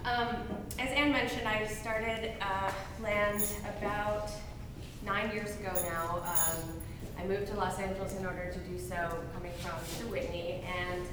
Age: 20-39